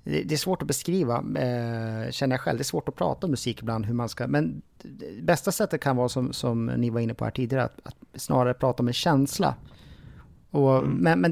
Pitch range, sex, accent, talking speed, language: 130-170 Hz, male, Norwegian, 225 wpm, Swedish